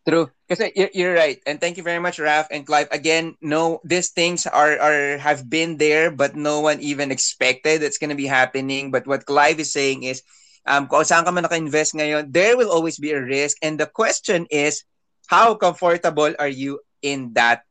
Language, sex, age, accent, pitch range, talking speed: English, male, 20-39, Filipino, 140-165 Hz, 185 wpm